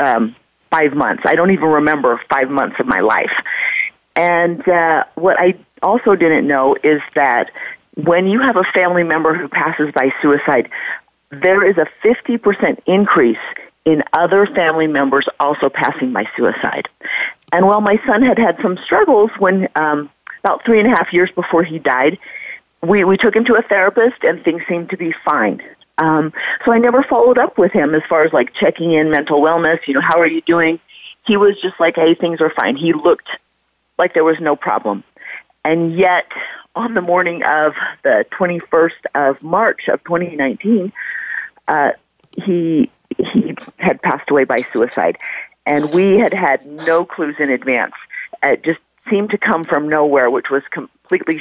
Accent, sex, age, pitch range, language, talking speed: American, female, 40-59, 155-205 Hz, English, 175 wpm